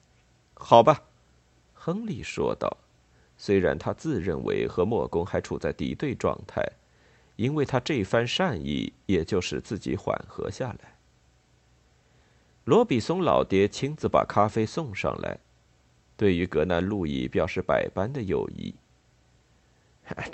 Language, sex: Chinese, male